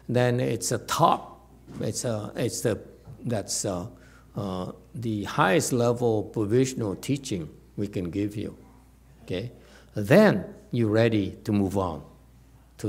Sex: male